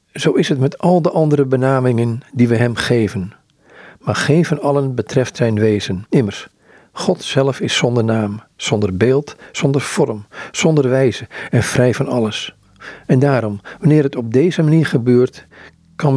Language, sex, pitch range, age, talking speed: Dutch, male, 115-145 Hz, 50-69, 165 wpm